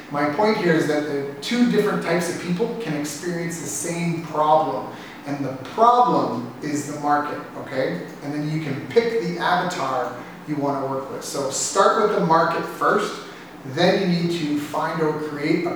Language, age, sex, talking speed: English, 30-49, male, 185 wpm